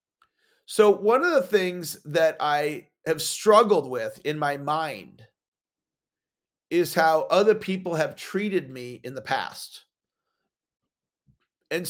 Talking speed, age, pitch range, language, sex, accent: 120 wpm, 40-59, 150-190 Hz, English, male, American